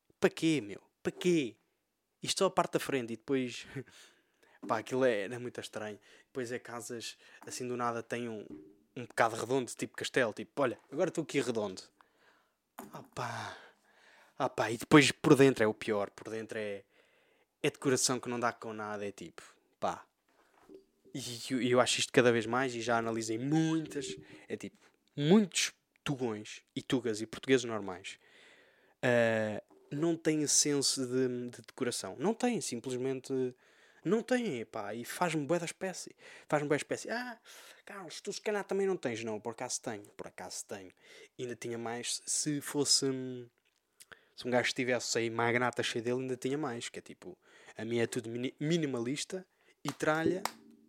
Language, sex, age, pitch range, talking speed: Portuguese, male, 20-39, 120-155 Hz, 170 wpm